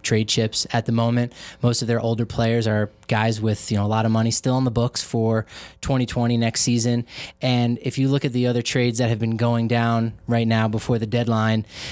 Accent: American